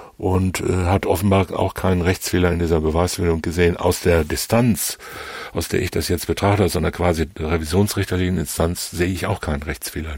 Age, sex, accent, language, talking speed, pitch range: 60-79, male, German, German, 165 wpm, 85-95 Hz